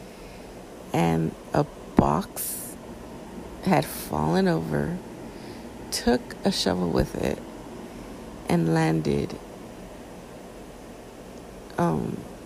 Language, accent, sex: English, American, female